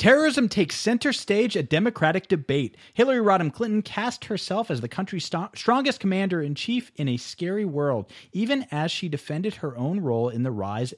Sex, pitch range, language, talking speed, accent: male, 120-185 Hz, English, 175 wpm, American